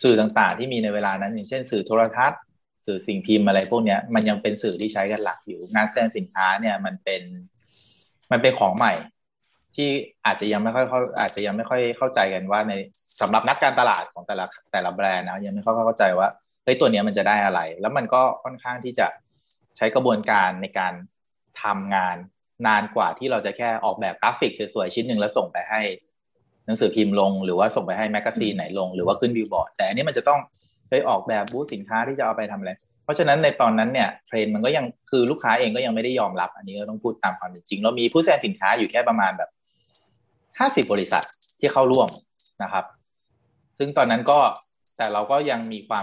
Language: Thai